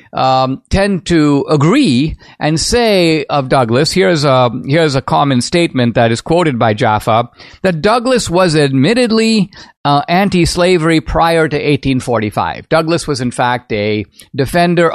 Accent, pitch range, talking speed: American, 120-165 Hz, 140 wpm